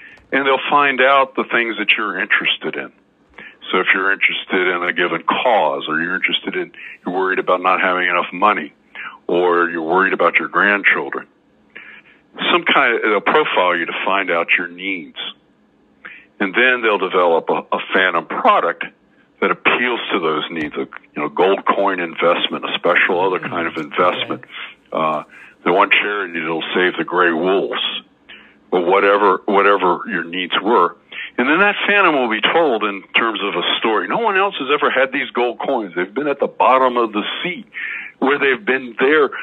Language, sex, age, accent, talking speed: English, male, 60-79, American, 180 wpm